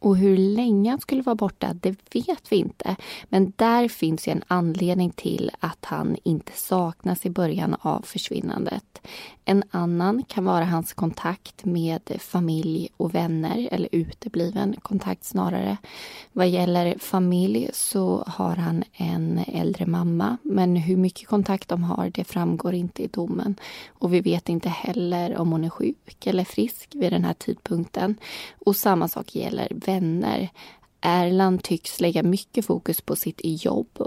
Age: 20-39